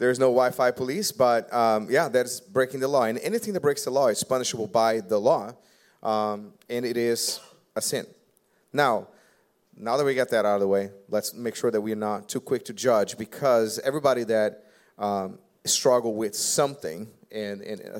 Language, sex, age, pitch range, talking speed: English, male, 30-49, 105-125 Hz, 190 wpm